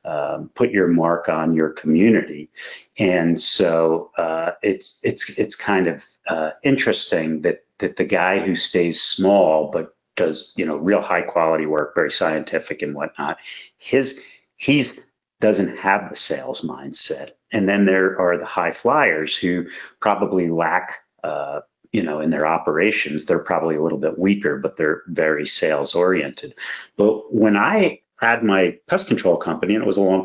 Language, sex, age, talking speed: English, male, 50-69, 165 wpm